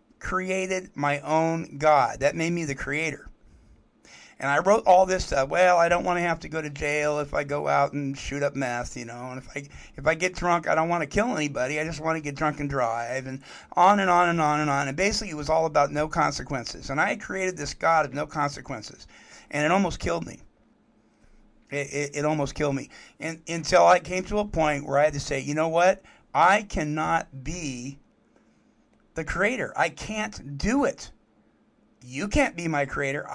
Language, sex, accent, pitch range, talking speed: English, male, American, 145-185 Hz, 215 wpm